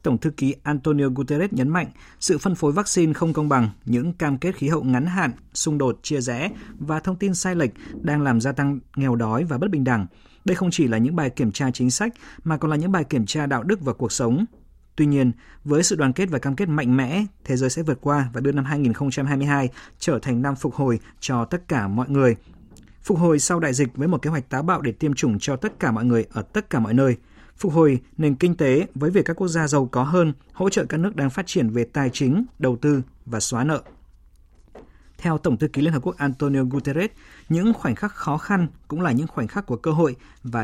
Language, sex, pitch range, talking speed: Vietnamese, male, 125-160 Hz, 245 wpm